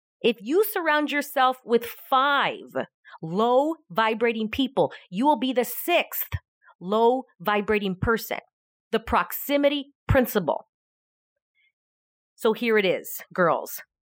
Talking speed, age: 105 wpm, 40-59